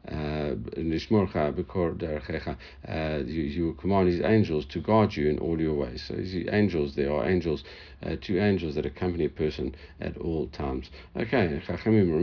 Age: 60-79